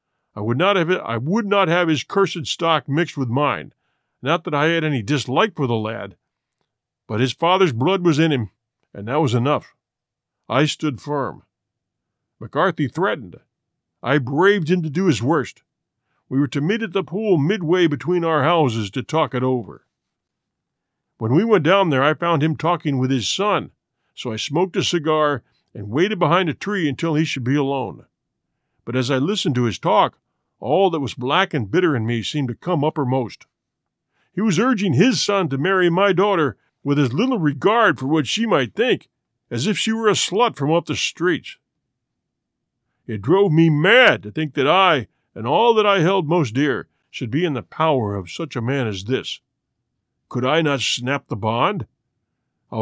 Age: 50-69